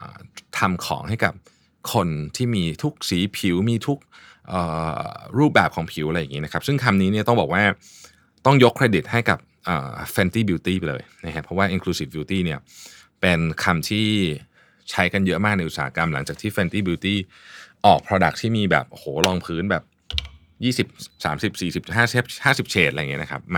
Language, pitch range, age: Thai, 85-105 Hz, 20-39